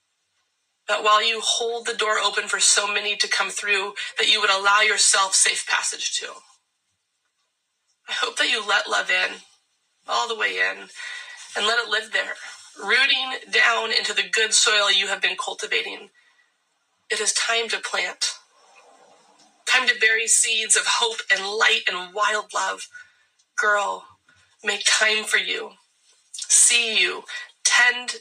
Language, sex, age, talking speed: English, female, 30-49, 150 wpm